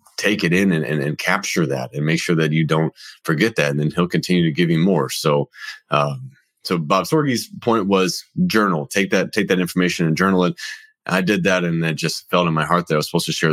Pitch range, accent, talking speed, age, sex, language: 80-110 Hz, American, 250 wpm, 30-49, male, English